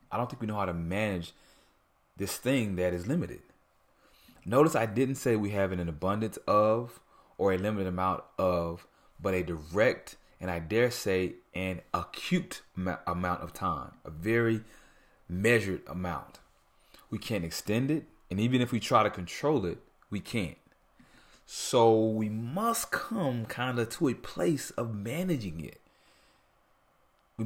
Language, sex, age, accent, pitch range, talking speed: English, male, 30-49, American, 90-115 Hz, 155 wpm